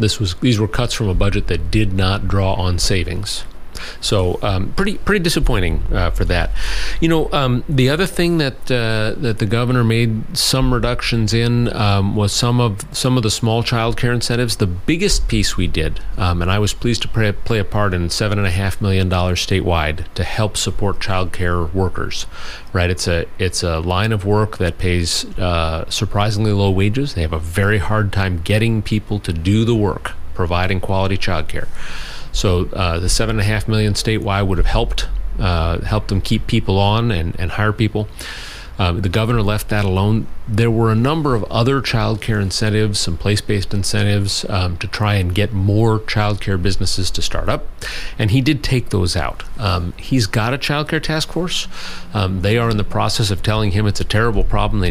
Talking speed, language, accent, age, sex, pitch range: 205 wpm, English, American, 40-59, male, 90-115 Hz